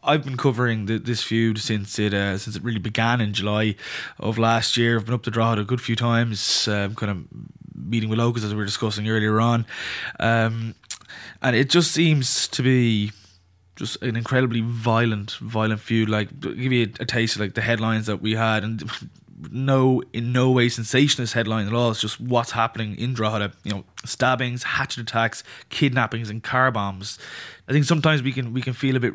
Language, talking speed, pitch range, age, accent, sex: English, 205 wpm, 110-125 Hz, 20-39, Irish, male